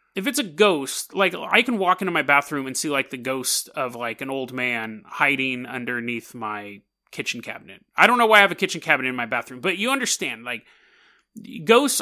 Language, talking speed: English, 215 wpm